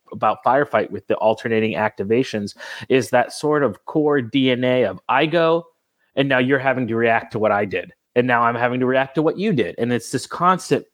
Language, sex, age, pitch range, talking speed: English, male, 30-49, 115-135 Hz, 215 wpm